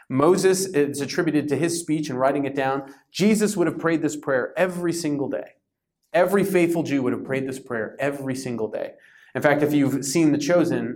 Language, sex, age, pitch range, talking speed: English, male, 30-49, 130-175 Hz, 205 wpm